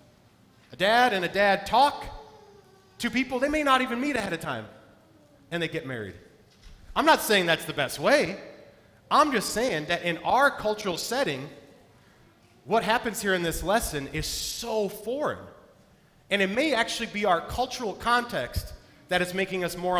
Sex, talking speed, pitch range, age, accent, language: male, 170 wpm, 140-195 Hz, 30-49, American, English